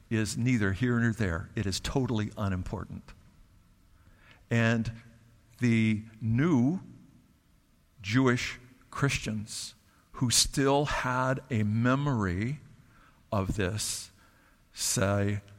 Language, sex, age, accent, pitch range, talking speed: English, male, 60-79, American, 110-145 Hz, 85 wpm